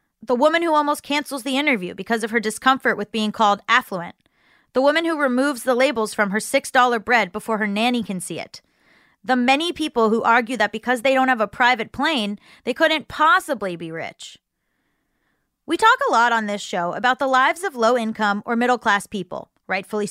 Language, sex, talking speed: English, female, 195 wpm